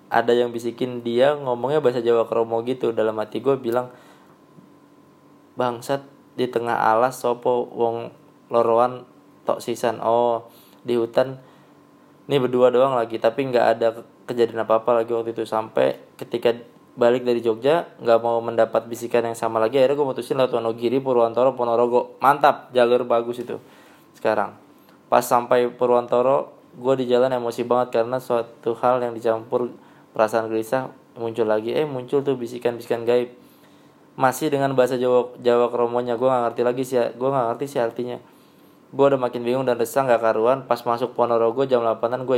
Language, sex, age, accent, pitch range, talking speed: Indonesian, male, 20-39, native, 115-130 Hz, 155 wpm